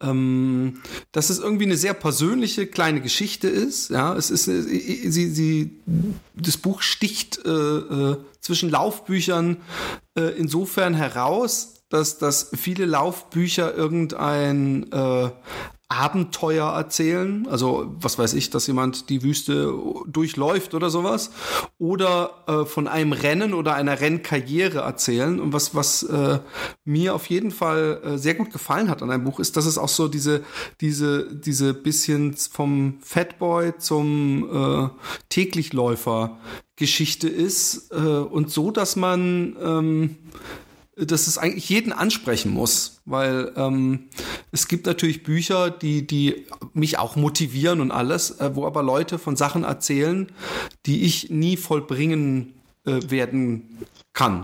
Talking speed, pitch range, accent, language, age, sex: 135 wpm, 140-175 Hz, German, German, 30-49, male